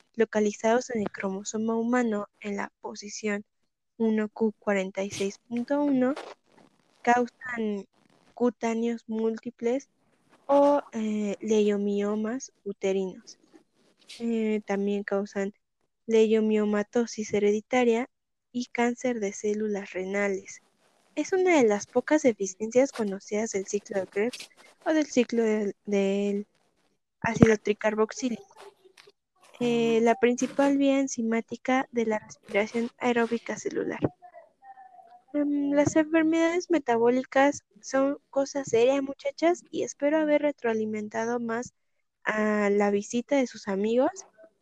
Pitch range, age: 210-270 Hz, 10-29